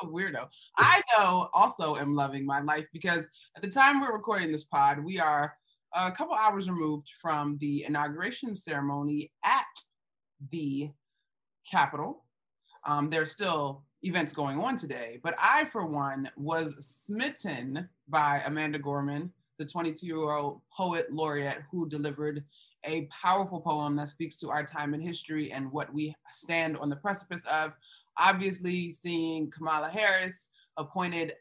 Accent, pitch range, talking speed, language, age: American, 145-175 Hz, 145 wpm, English, 20-39